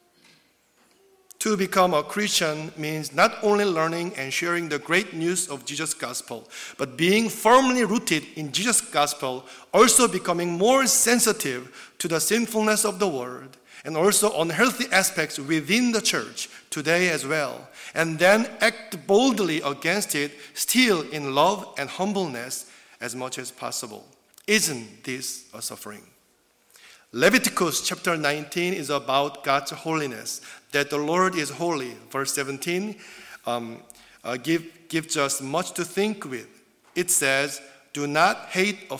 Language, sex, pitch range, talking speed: English, male, 140-195 Hz, 140 wpm